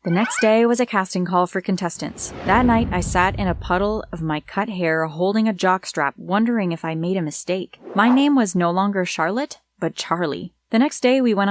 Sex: female